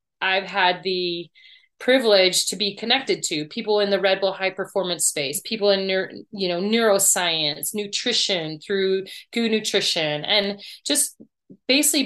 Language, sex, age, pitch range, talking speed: English, female, 30-49, 190-215 Hz, 140 wpm